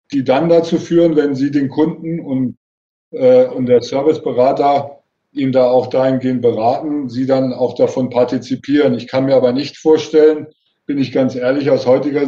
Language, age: German, 50-69